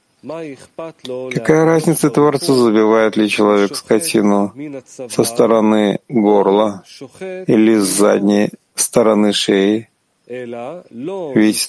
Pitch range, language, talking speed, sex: 105-135 Hz, Russian, 80 wpm, male